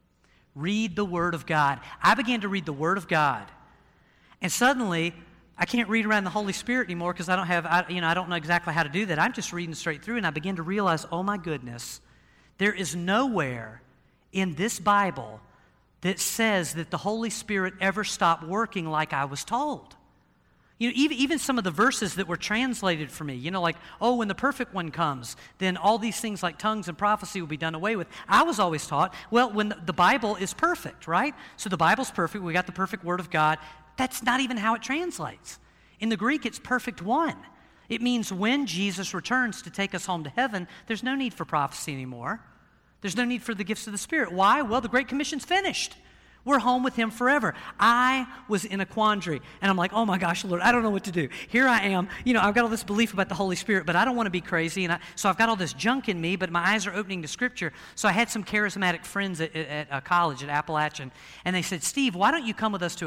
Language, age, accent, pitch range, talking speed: English, 40-59, American, 165-225 Hz, 240 wpm